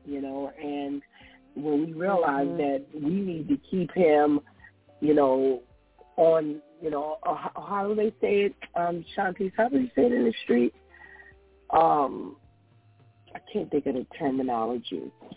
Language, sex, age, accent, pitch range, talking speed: English, female, 40-59, American, 140-190 Hz, 155 wpm